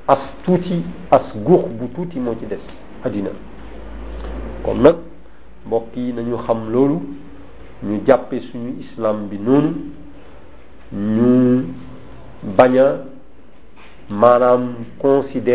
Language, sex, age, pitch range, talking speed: French, male, 50-69, 115-150 Hz, 55 wpm